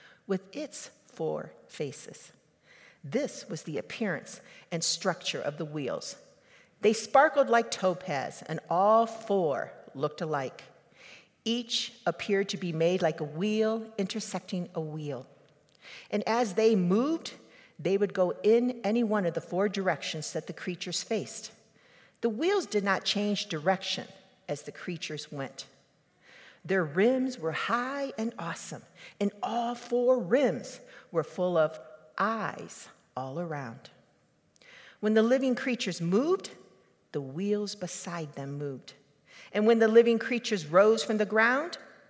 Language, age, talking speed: English, 50-69, 135 wpm